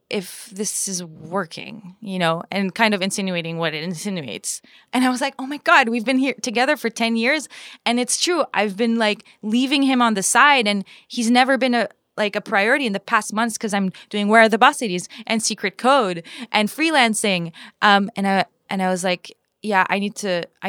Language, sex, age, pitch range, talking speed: English, female, 20-39, 180-225 Hz, 220 wpm